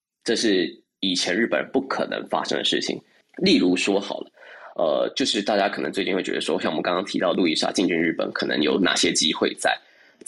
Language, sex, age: Chinese, male, 20-39